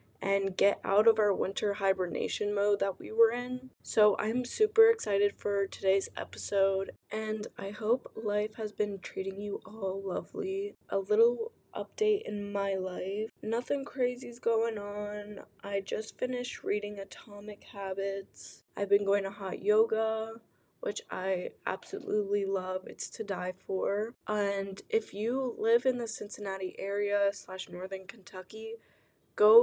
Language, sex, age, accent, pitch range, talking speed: English, female, 10-29, American, 195-225 Hz, 145 wpm